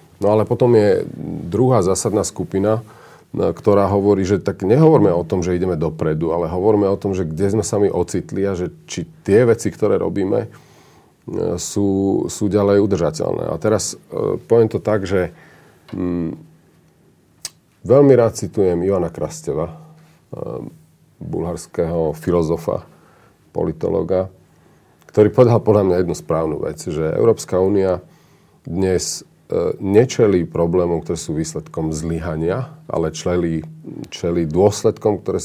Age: 40-59